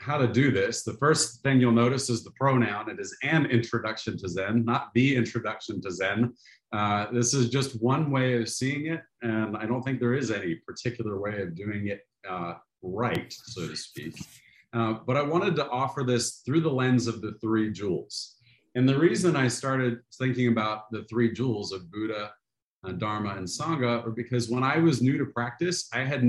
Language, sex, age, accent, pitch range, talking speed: English, male, 40-59, American, 105-130 Hz, 200 wpm